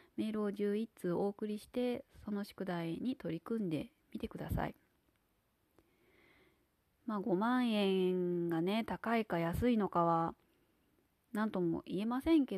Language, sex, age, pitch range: Japanese, female, 20-39, 175-245 Hz